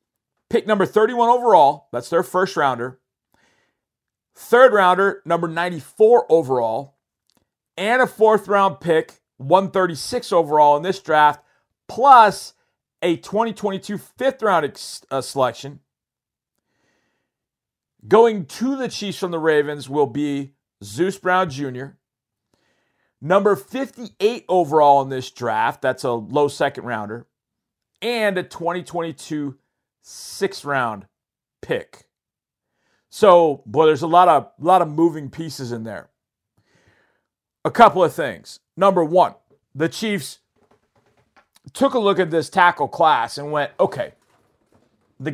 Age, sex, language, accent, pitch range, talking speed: 50-69, male, English, American, 140-190 Hz, 120 wpm